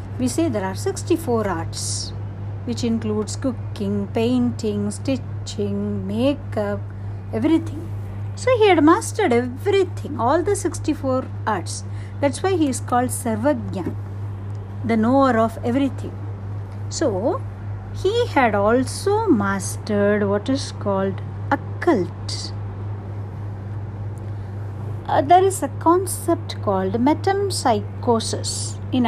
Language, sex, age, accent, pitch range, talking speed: Tamil, female, 60-79, native, 100-135 Hz, 100 wpm